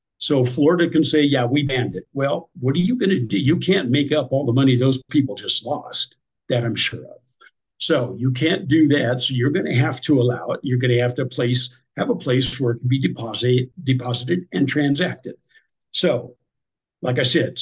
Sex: male